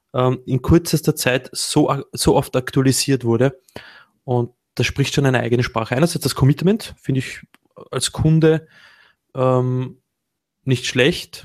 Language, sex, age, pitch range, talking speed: German, male, 20-39, 125-140 Hz, 135 wpm